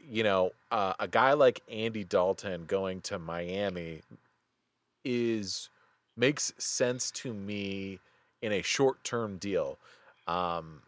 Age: 30-49